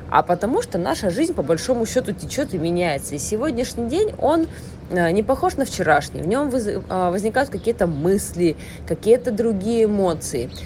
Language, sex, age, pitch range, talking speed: Russian, female, 20-39, 170-230 Hz, 150 wpm